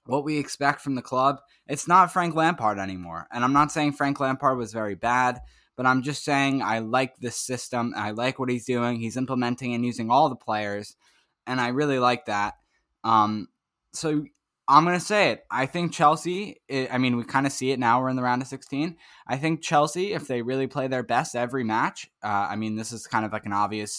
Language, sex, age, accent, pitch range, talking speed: English, male, 10-29, American, 110-140 Hz, 225 wpm